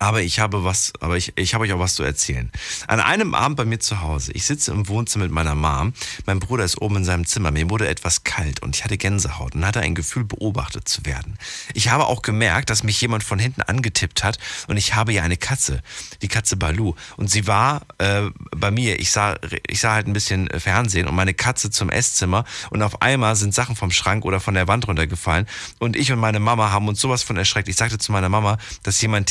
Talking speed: 240 wpm